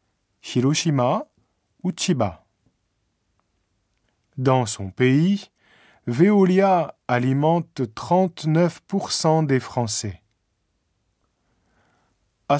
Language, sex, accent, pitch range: Japanese, male, French, 110-170 Hz